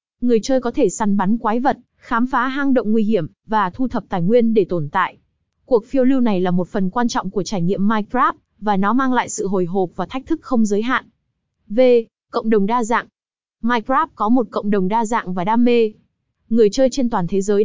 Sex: female